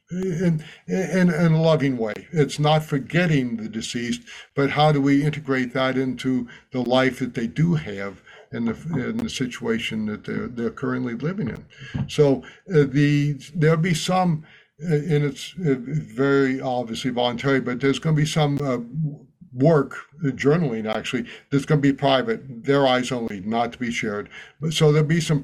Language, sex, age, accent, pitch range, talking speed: English, male, 60-79, American, 125-155 Hz, 180 wpm